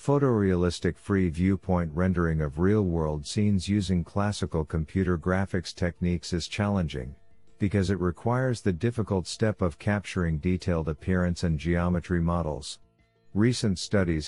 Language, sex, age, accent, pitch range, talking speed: English, male, 50-69, American, 85-100 Hz, 120 wpm